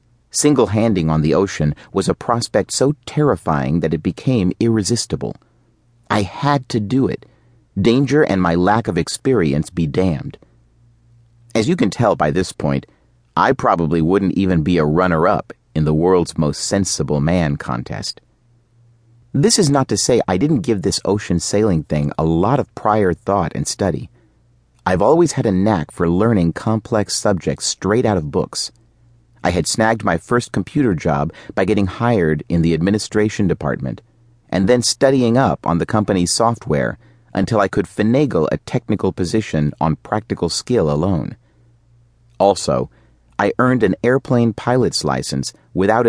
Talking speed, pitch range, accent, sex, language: 155 wpm, 85-120 Hz, American, male, English